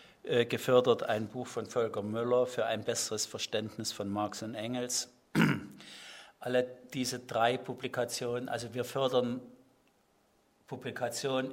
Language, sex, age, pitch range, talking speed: German, male, 50-69, 110-125 Hz, 115 wpm